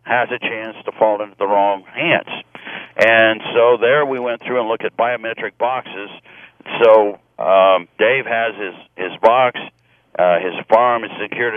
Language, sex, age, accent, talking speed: English, male, 60-79, American, 165 wpm